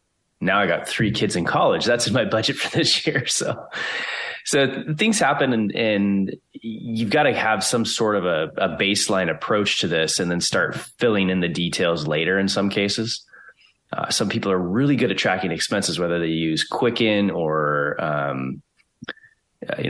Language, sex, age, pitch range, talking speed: English, male, 20-39, 90-115 Hz, 180 wpm